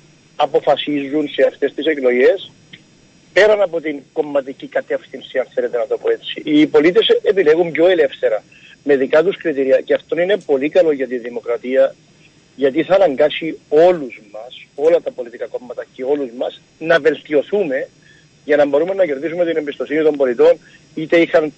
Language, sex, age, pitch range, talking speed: Greek, male, 50-69, 145-205 Hz, 160 wpm